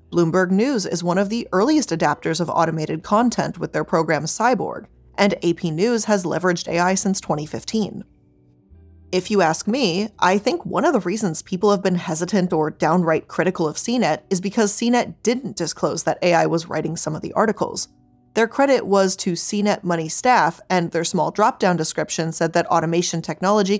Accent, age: American, 20-39